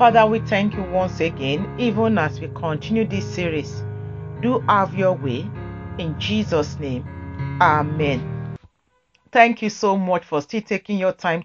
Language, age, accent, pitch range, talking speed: English, 40-59, Nigerian, 150-210 Hz, 150 wpm